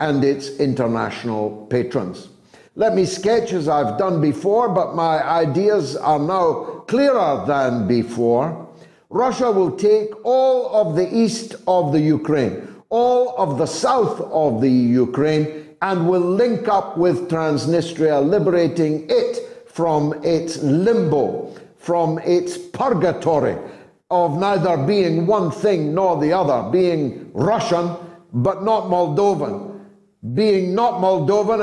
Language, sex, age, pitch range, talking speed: English, male, 60-79, 150-215 Hz, 125 wpm